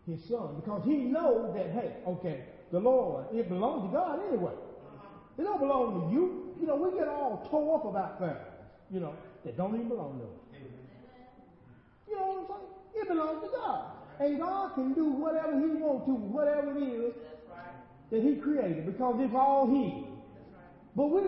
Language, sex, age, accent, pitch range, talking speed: English, male, 40-59, American, 180-285 Hz, 185 wpm